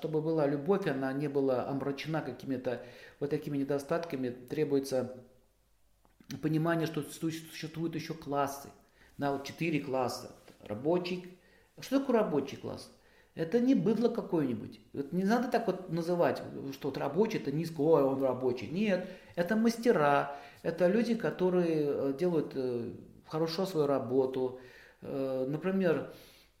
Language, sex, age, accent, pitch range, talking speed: Russian, male, 50-69, native, 130-165 Hz, 125 wpm